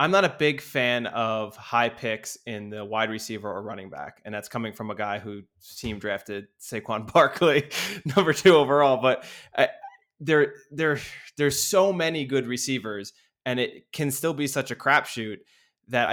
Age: 20-39